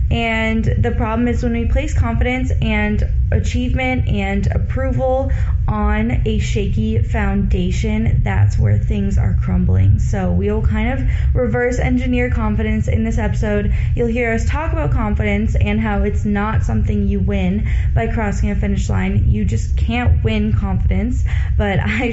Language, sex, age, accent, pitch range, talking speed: English, female, 20-39, American, 90-110 Hz, 150 wpm